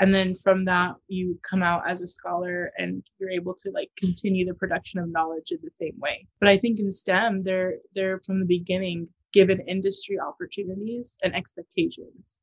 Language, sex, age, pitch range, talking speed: English, female, 20-39, 180-205 Hz, 190 wpm